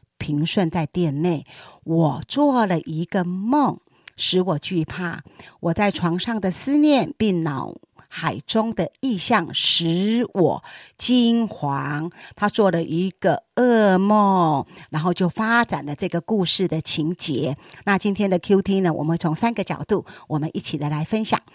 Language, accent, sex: Chinese, American, female